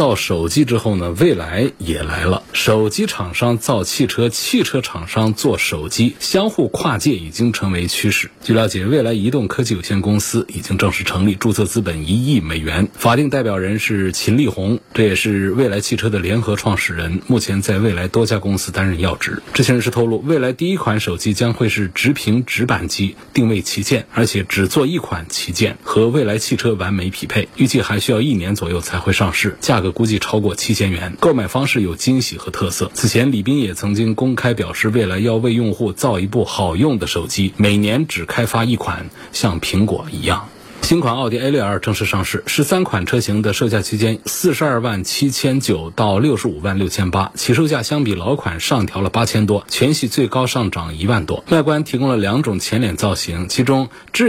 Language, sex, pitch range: Chinese, male, 95-120 Hz